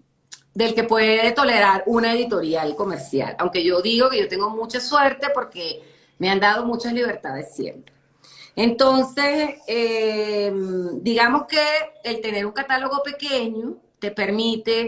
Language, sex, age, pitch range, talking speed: Portuguese, female, 40-59, 200-255 Hz, 135 wpm